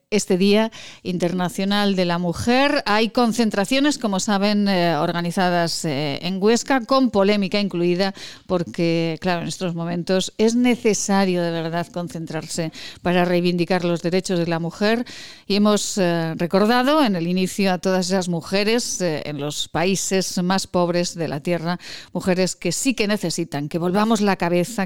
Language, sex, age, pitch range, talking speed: Spanish, female, 40-59, 180-230 Hz, 155 wpm